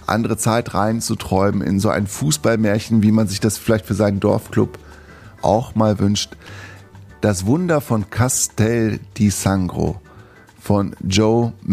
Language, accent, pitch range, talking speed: German, German, 100-120 Hz, 135 wpm